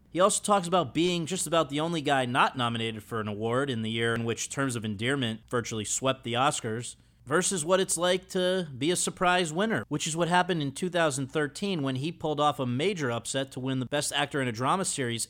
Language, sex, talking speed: English, male, 230 wpm